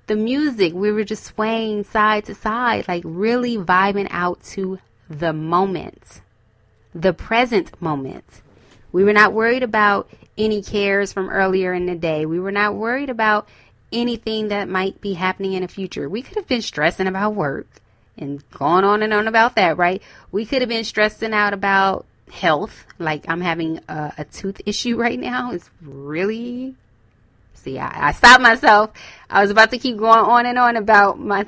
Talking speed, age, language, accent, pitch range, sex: 180 wpm, 20-39, English, American, 175-225 Hz, female